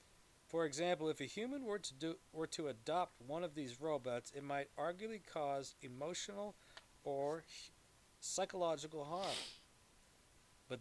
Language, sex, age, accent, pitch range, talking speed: English, male, 40-59, American, 120-155 Hz, 120 wpm